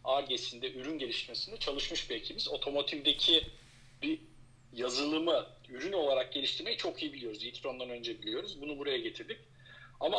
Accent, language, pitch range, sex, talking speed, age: native, Turkish, 130-190 Hz, male, 130 wpm, 50-69